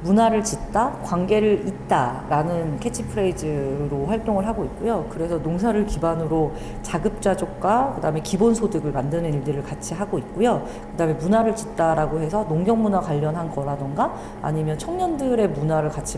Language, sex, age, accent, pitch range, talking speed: English, female, 40-59, Korean, 155-215 Hz, 110 wpm